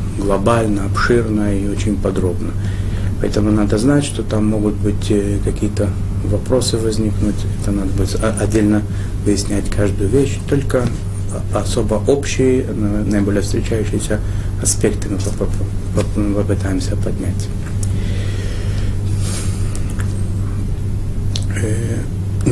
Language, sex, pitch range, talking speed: Russian, male, 100-110 Hz, 85 wpm